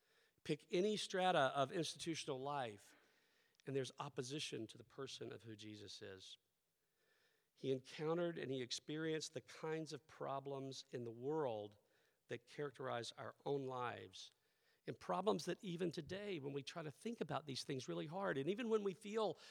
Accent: American